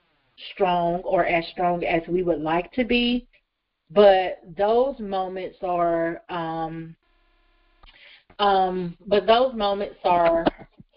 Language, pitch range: English, 175-200 Hz